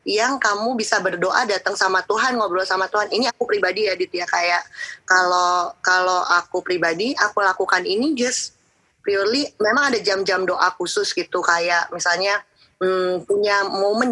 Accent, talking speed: native, 155 wpm